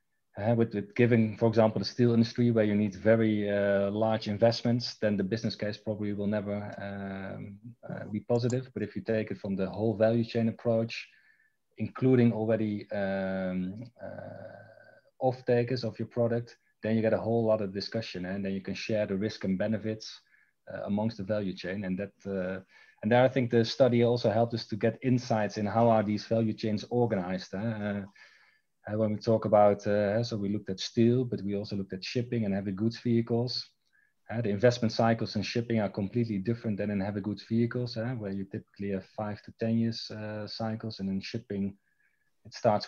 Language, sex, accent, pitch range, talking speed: English, male, Dutch, 100-115 Hz, 200 wpm